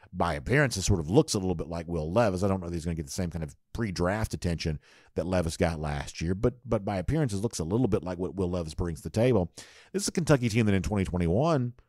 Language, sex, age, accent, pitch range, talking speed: English, male, 50-69, American, 90-120 Hz, 280 wpm